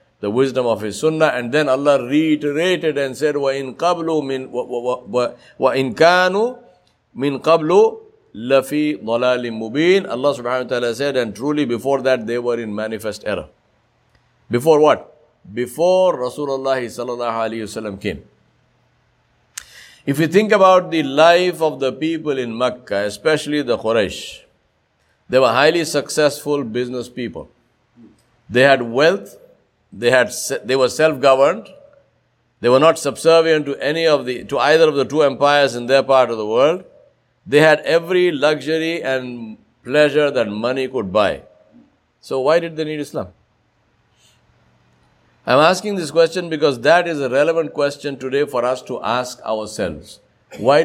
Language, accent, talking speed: English, Indian, 135 wpm